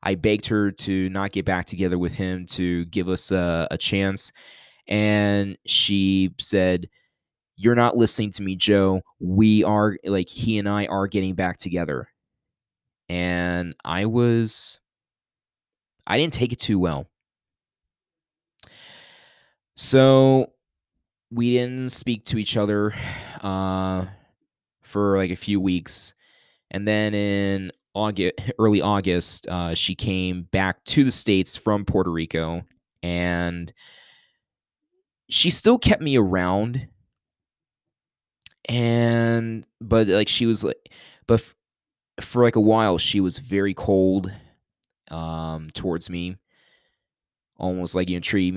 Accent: American